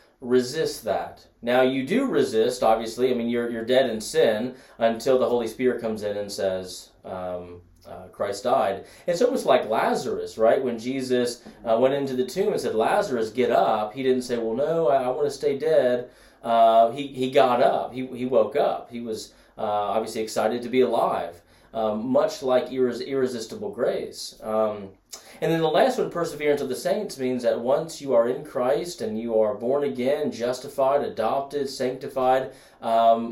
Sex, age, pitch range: male, 30-49, 110-135 Hz